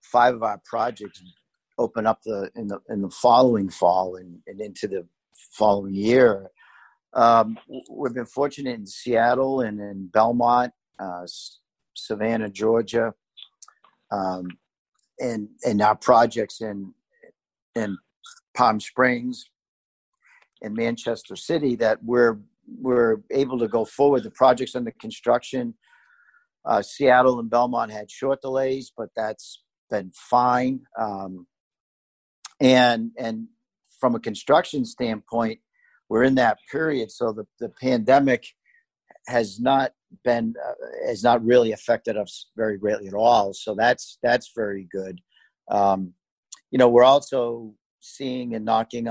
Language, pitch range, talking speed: English, 105-130 Hz, 130 wpm